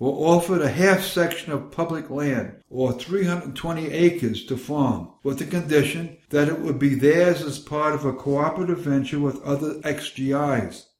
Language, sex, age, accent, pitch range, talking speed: English, male, 60-79, American, 130-155 Hz, 160 wpm